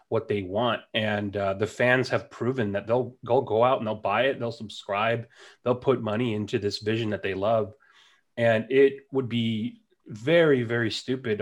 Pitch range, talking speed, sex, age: 105-125 Hz, 190 wpm, male, 30-49